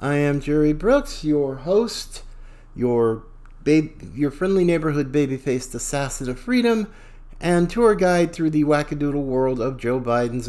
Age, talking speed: 50-69, 135 wpm